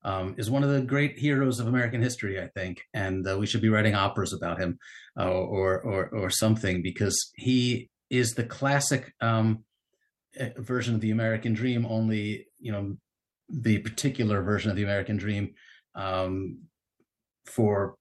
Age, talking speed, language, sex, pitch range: 30-49, 165 wpm, English, male, 95-115 Hz